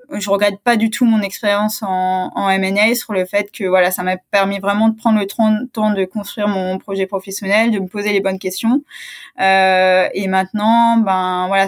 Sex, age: female, 20-39